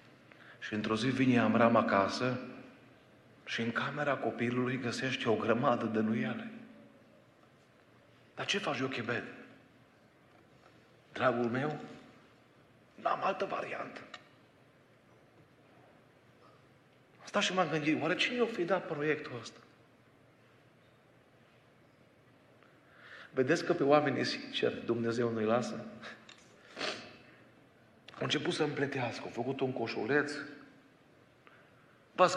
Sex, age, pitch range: male, 50-69, 120-160 Hz